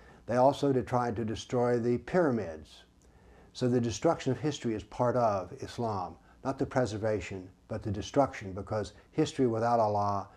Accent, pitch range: American, 100-125 Hz